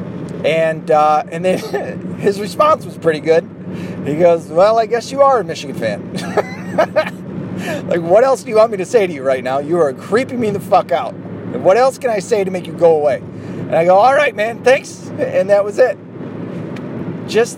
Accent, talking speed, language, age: American, 210 wpm, English, 30-49